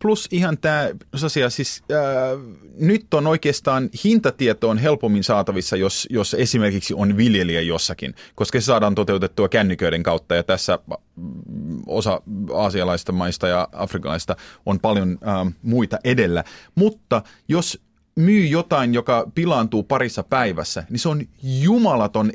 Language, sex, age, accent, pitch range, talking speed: Finnish, male, 30-49, native, 100-145 Hz, 130 wpm